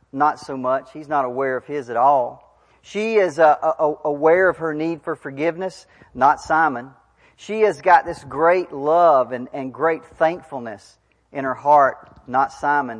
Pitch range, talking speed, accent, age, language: 140-200 Hz, 165 wpm, American, 40-59, English